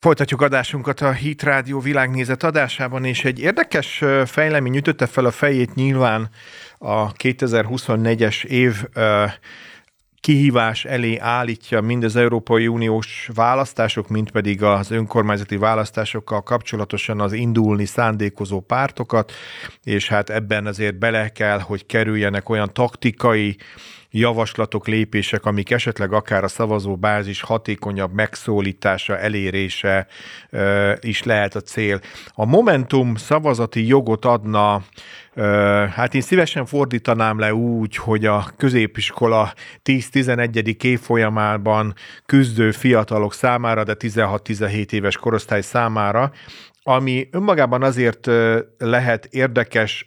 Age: 40-59